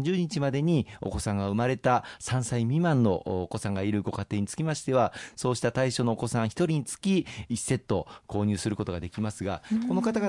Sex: male